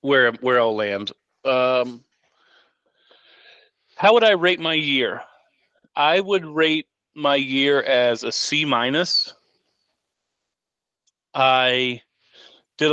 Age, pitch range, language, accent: 30-49, 120-140 Hz, English, American